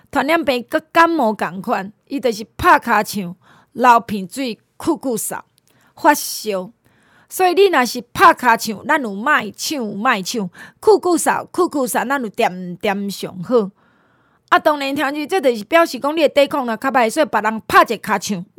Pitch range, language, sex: 220-295 Hz, Chinese, female